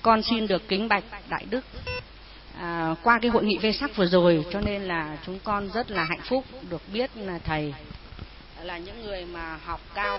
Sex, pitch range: female, 165-220 Hz